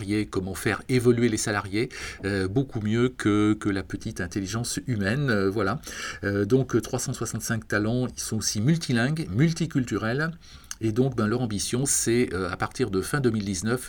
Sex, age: male, 40-59